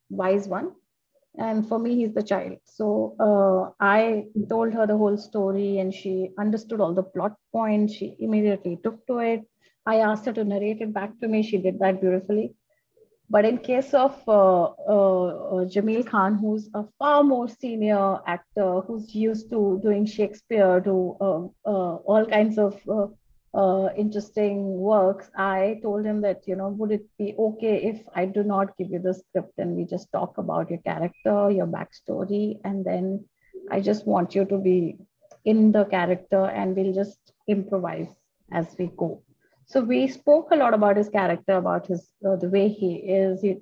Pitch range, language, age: 190-220 Hz, English, 30-49